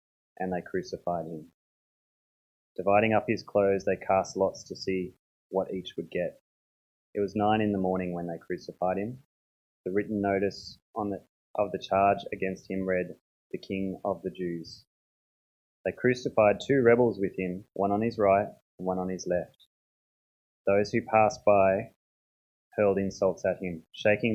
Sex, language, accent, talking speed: male, English, Australian, 160 wpm